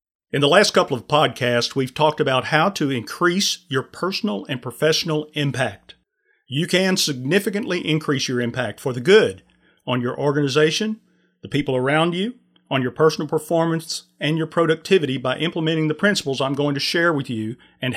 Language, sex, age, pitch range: English, male, 40-59, 135-170 Hz